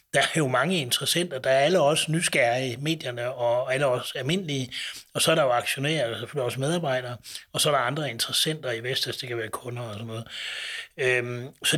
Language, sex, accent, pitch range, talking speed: Danish, male, native, 130-160 Hz, 215 wpm